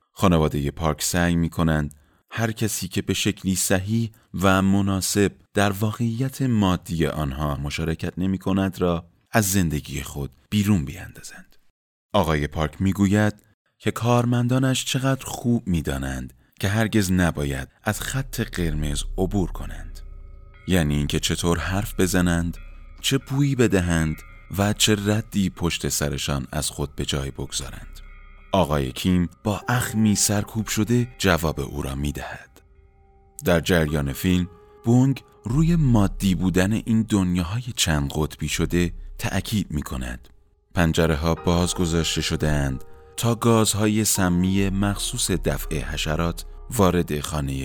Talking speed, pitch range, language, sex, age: 120 wpm, 75-100 Hz, Persian, male, 30-49